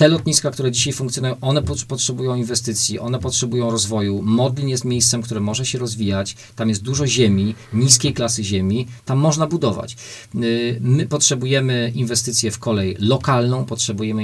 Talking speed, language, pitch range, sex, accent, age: 150 wpm, Polish, 110-130 Hz, male, native, 40-59